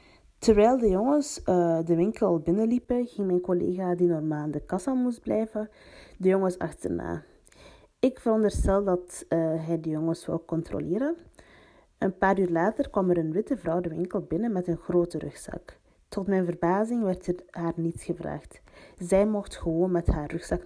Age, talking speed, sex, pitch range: 30-49, 170 wpm, female, 160-205 Hz